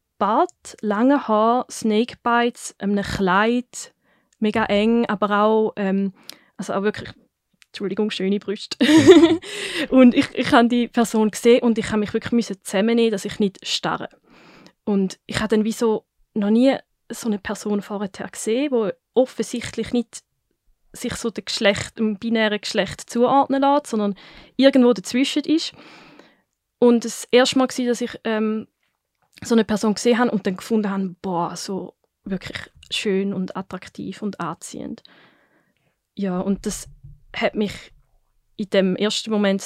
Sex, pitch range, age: female, 195-235 Hz, 20-39